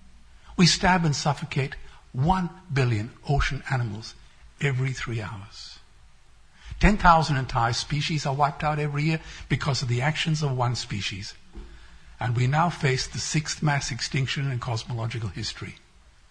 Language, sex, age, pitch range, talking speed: English, male, 60-79, 110-150 Hz, 140 wpm